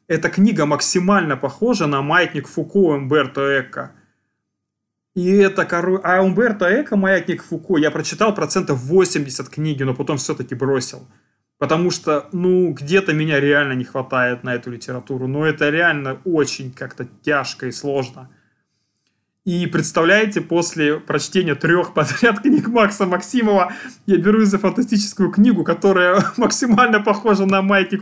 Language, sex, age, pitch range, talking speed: Russian, male, 20-39, 145-195 Hz, 140 wpm